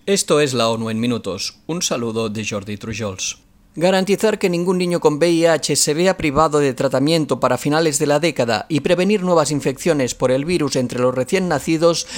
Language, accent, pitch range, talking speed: Spanish, Spanish, 130-165 Hz, 185 wpm